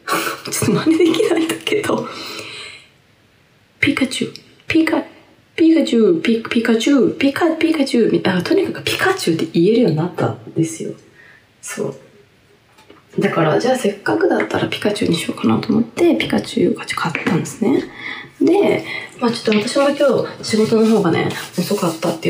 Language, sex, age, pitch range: Japanese, female, 20-39, 165-250 Hz